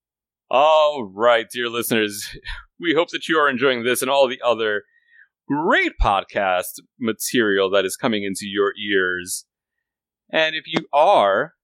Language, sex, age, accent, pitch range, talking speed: English, male, 30-49, American, 110-170 Hz, 145 wpm